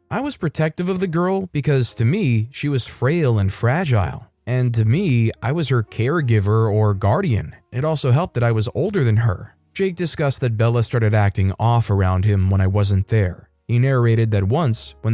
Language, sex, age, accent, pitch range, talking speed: English, male, 20-39, American, 105-135 Hz, 200 wpm